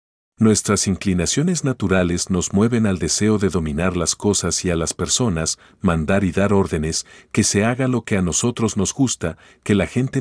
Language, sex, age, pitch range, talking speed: Spanish, male, 40-59, 90-115 Hz, 180 wpm